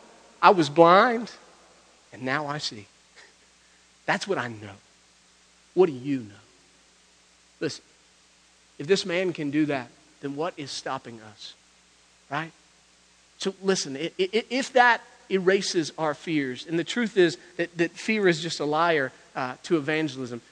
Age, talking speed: 40-59, 135 wpm